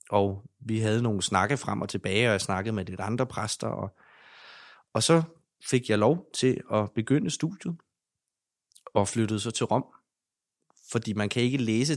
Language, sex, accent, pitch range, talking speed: Danish, male, native, 100-125 Hz, 175 wpm